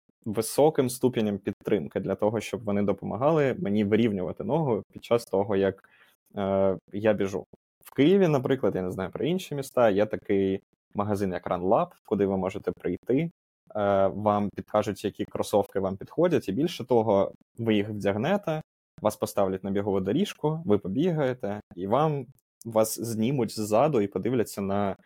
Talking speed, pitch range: 155 wpm, 100-125 Hz